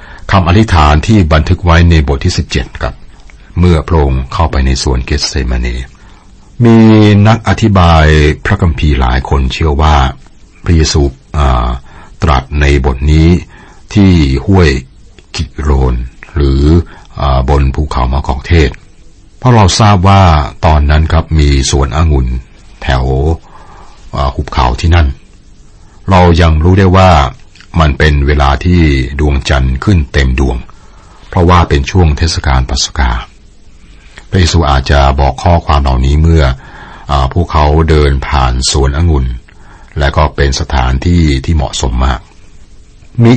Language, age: Thai, 60-79